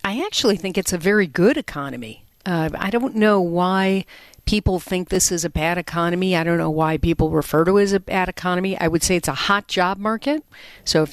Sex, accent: female, American